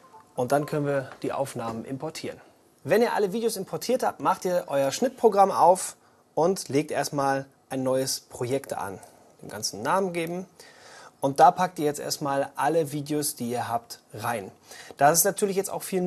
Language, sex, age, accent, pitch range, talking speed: German, male, 30-49, German, 135-185 Hz, 175 wpm